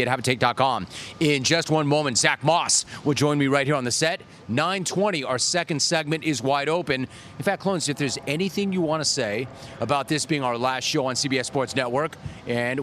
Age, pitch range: 30-49, 135-170 Hz